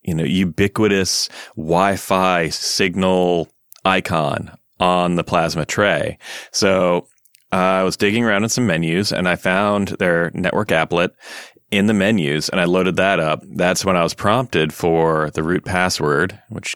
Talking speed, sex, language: 155 wpm, male, English